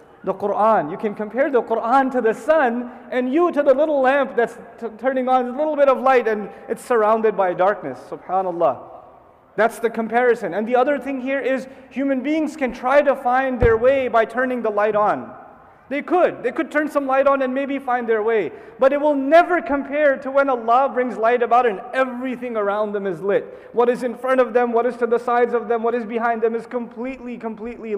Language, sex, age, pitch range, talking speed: English, male, 30-49, 225-270 Hz, 220 wpm